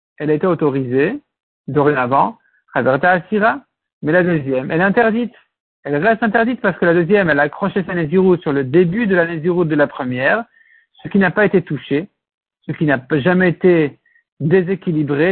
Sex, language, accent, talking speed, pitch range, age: male, French, French, 170 wpm, 160-220 Hz, 60-79